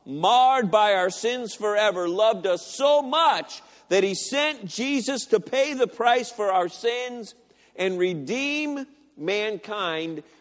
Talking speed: 135 wpm